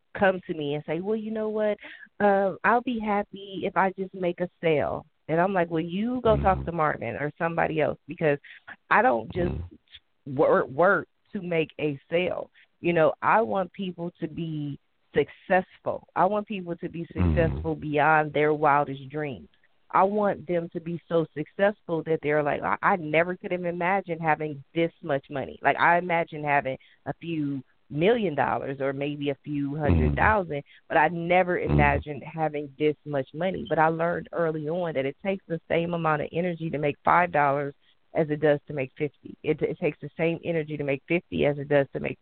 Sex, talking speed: female, 195 wpm